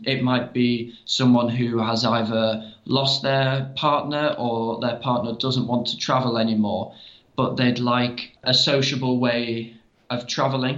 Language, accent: English, British